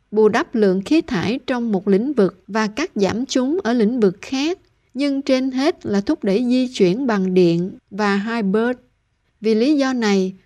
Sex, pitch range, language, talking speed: female, 200-245 Hz, Vietnamese, 190 wpm